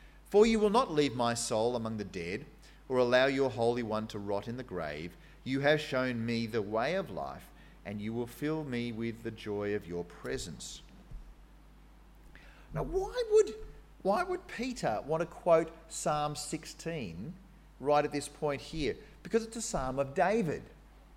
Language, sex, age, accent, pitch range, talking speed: English, male, 40-59, Australian, 130-190 Hz, 175 wpm